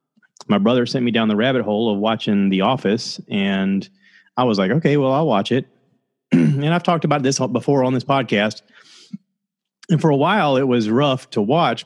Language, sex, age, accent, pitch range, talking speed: English, male, 30-49, American, 110-145 Hz, 195 wpm